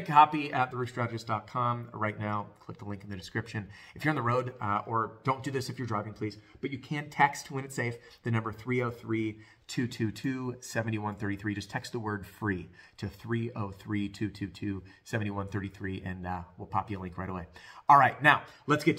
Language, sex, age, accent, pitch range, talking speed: English, male, 30-49, American, 105-130 Hz, 175 wpm